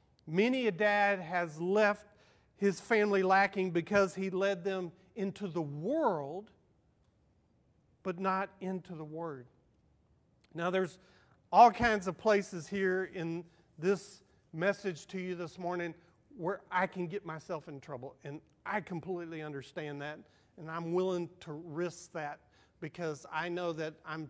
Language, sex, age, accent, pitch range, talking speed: English, male, 40-59, American, 155-185 Hz, 140 wpm